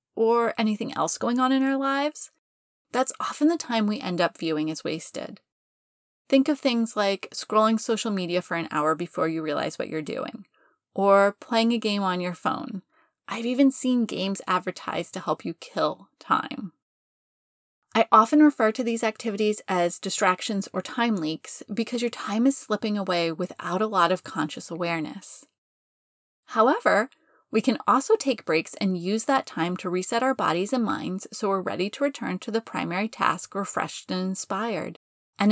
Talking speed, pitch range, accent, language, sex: 175 wpm, 185-240 Hz, American, English, female